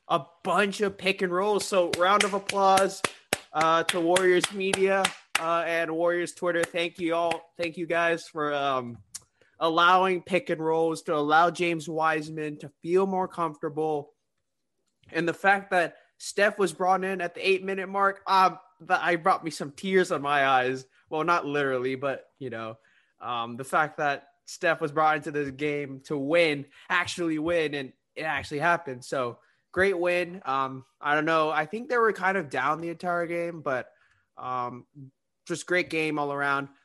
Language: English